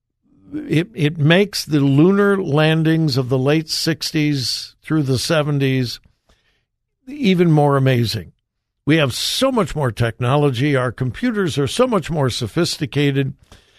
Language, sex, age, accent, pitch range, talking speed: English, male, 60-79, American, 125-165 Hz, 125 wpm